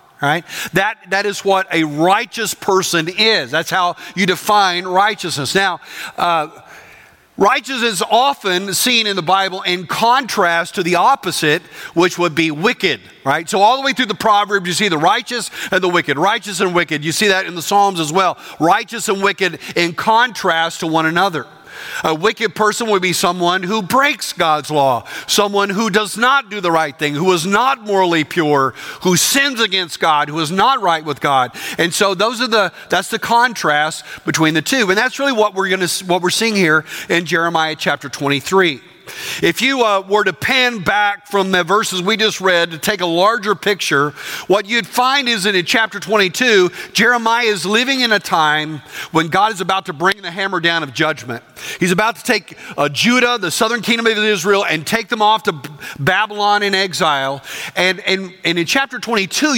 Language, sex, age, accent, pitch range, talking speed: English, male, 50-69, American, 170-215 Hz, 195 wpm